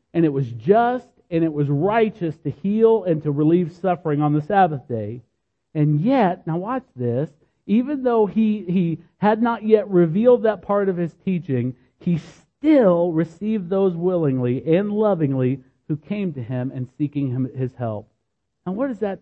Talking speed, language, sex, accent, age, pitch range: 175 wpm, English, male, American, 50-69, 130-195 Hz